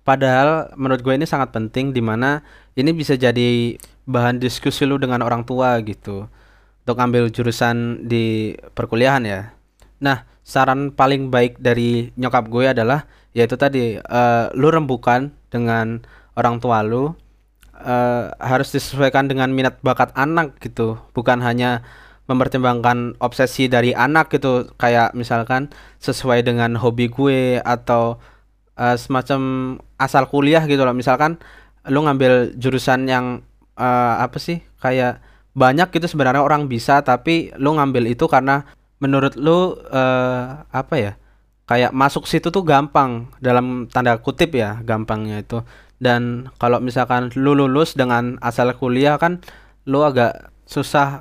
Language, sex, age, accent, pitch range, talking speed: Indonesian, male, 20-39, native, 120-140 Hz, 135 wpm